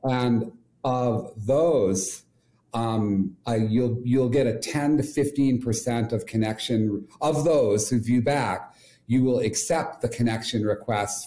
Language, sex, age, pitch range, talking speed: English, male, 40-59, 110-130 Hz, 135 wpm